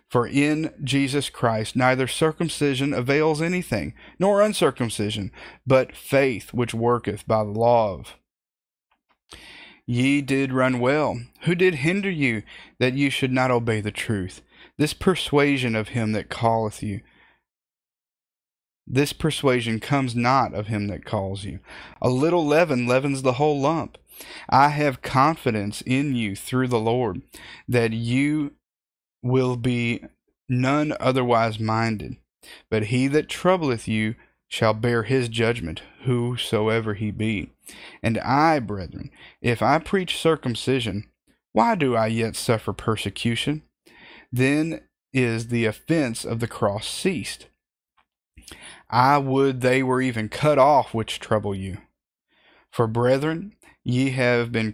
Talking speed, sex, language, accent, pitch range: 130 wpm, male, English, American, 110-140 Hz